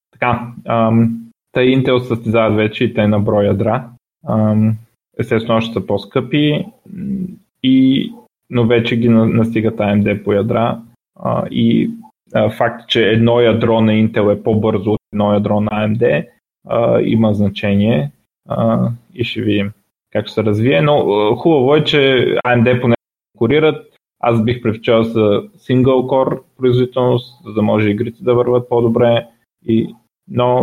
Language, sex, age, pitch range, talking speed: Bulgarian, male, 20-39, 110-130 Hz, 135 wpm